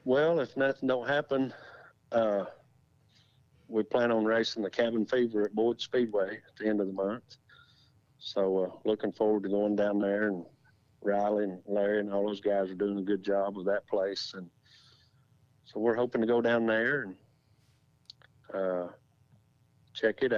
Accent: American